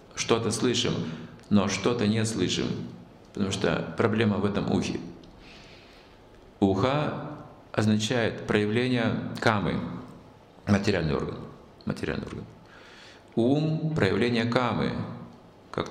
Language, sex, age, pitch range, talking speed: Russian, male, 50-69, 90-120 Hz, 85 wpm